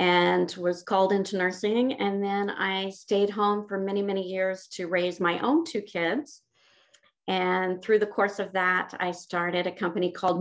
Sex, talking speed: female, 180 wpm